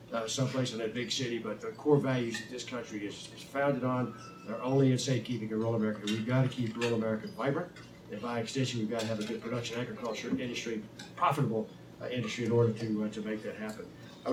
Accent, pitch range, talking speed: American, 115-145 Hz, 230 wpm